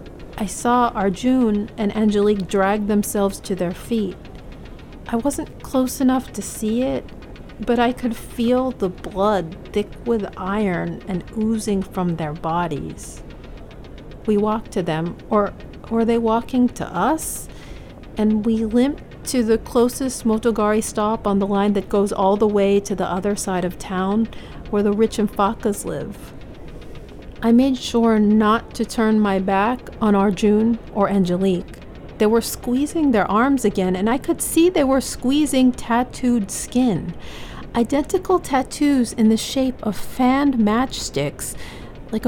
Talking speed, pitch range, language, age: 150 wpm, 200-245 Hz, English, 40-59